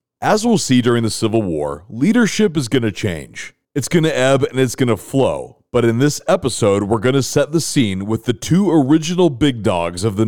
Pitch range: 105-140 Hz